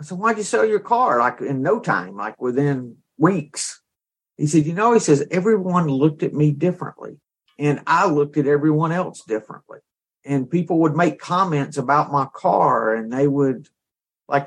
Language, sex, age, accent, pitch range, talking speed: English, male, 50-69, American, 130-160 Hz, 180 wpm